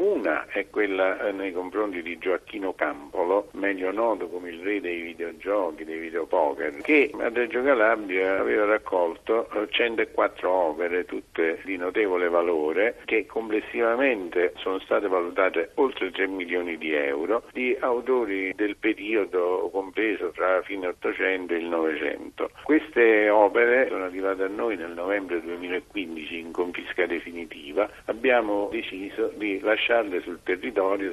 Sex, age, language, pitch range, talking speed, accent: male, 50-69, Italian, 90-120 Hz, 130 wpm, native